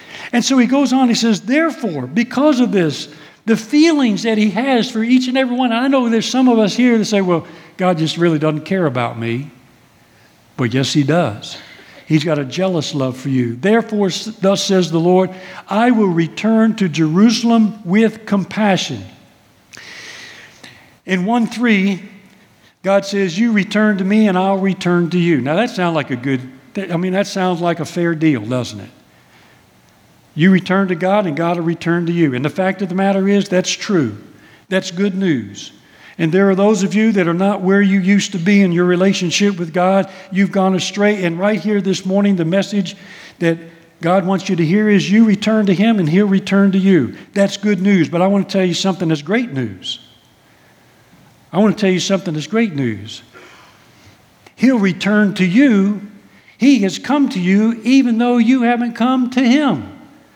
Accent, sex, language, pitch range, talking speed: American, male, English, 165-215 Hz, 195 wpm